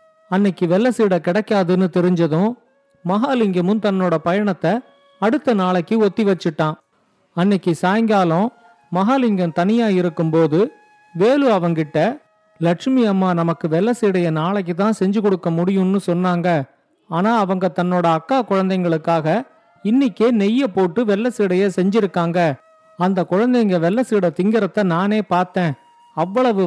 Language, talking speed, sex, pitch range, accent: Tamil, 110 wpm, male, 180-225 Hz, native